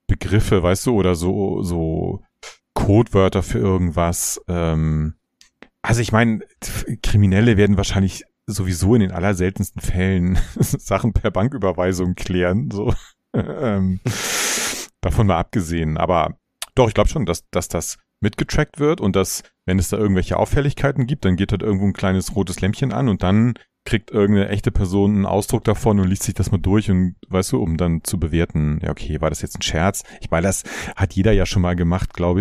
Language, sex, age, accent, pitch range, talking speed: German, male, 30-49, German, 90-105 Hz, 175 wpm